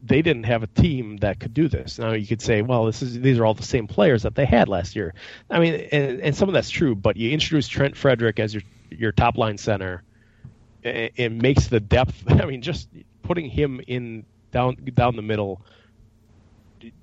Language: English